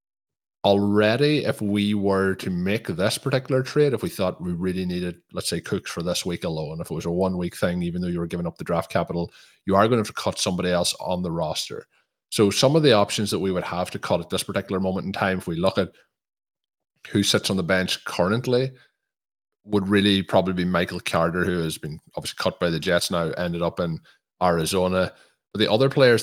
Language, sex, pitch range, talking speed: English, male, 90-105 Hz, 230 wpm